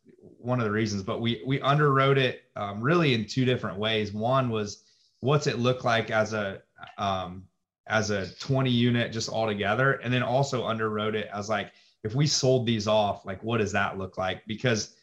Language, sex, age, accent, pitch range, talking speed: English, male, 30-49, American, 105-130 Hz, 200 wpm